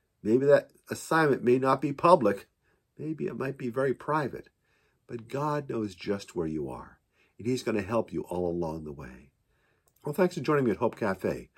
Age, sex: 50-69, male